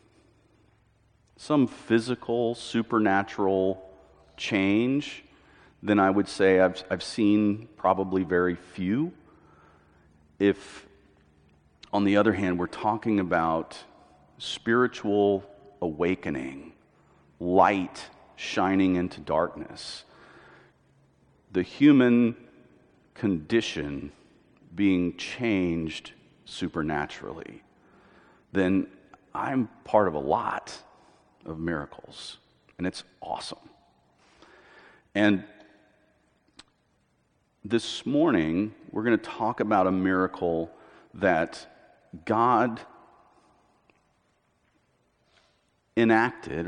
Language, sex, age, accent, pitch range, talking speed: English, male, 40-59, American, 90-115 Hz, 75 wpm